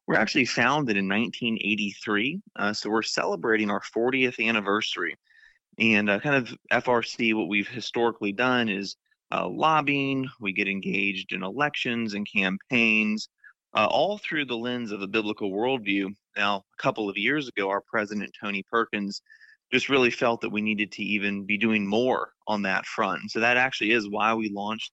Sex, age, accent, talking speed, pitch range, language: male, 30-49, American, 170 wpm, 100-120 Hz, English